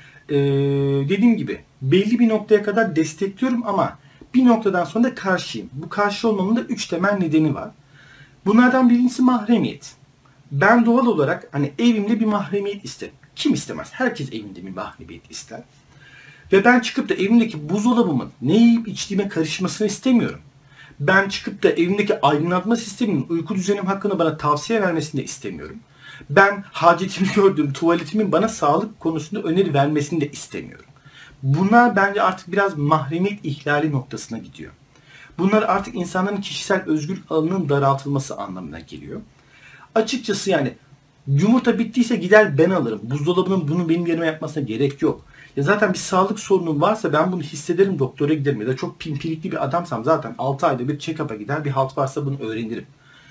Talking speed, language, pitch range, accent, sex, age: 150 wpm, Turkish, 145-205 Hz, native, male, 50-69